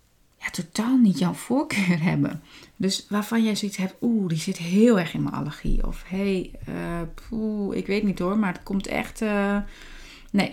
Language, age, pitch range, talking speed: Dutch, 30-49, 170-235 Hz, 190 wpm